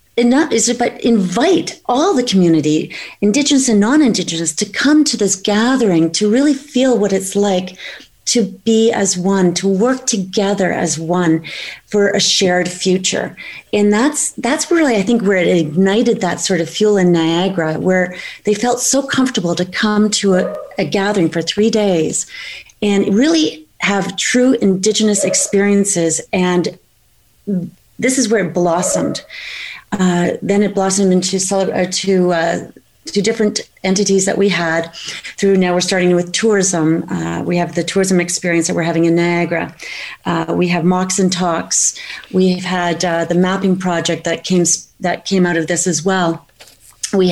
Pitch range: 175-215 Hz